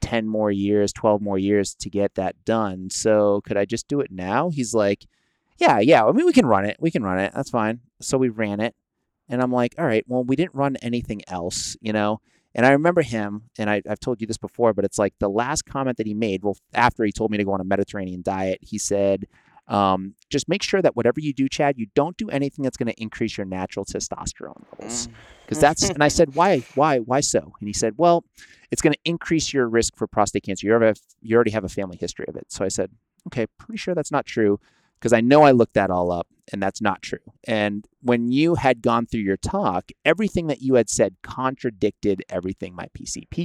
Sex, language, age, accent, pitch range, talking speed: male, English, 30-49, American, 100-130 Hz, 240 wpm